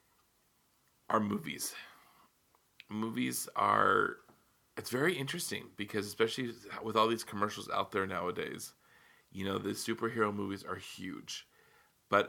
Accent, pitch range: American, 100-120 Hz